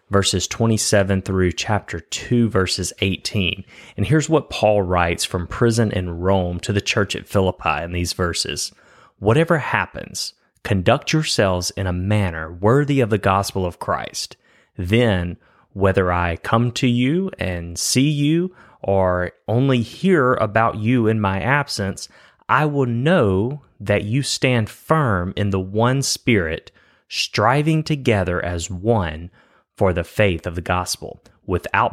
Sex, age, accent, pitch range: male, 30-49, American, 95-120 Hz